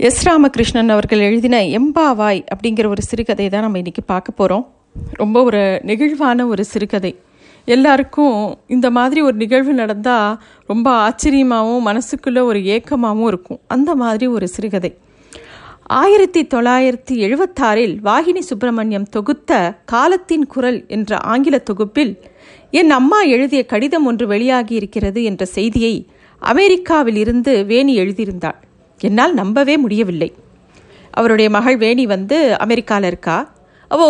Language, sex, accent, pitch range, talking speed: Tamil, female, native, 220-280 Hz, 115 wpm